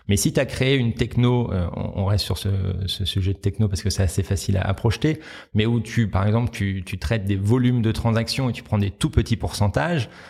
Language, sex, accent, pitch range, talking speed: French, male, French, 100-115 Hz, 245 wpm